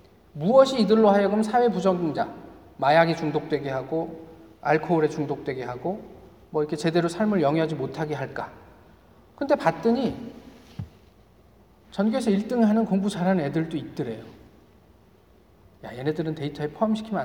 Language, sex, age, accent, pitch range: Korean, male, 40-59, native, 145-215 Hz